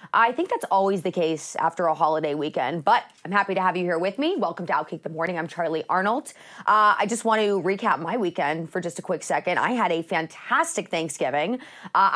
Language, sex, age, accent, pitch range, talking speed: English, female, 30-49, American, 175-220 Hz, 225 wpm